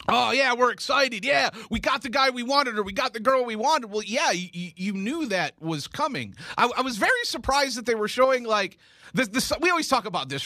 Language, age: English, 30-49